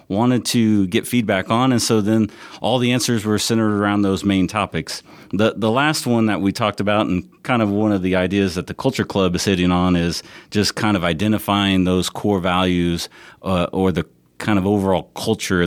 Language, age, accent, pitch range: English, 40-59, American, 95-115 Hz